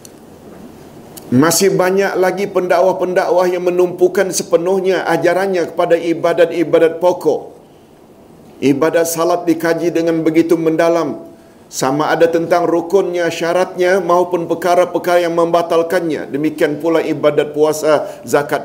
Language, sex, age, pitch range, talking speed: Malayalam, male, 50-69, 160-180 Hz, 100 wpm